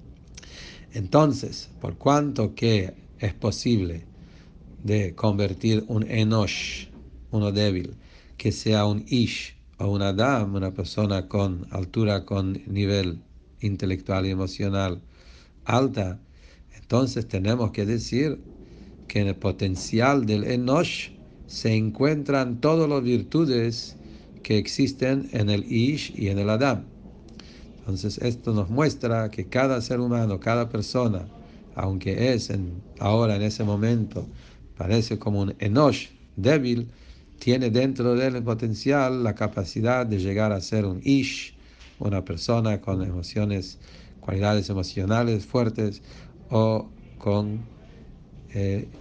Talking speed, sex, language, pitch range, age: 120 wpm, male, English, 95-120 Hz, 60-79